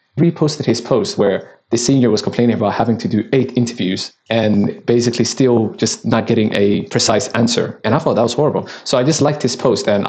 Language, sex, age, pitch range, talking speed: English, male, 20-39, 110-125 Hz, 215 wpm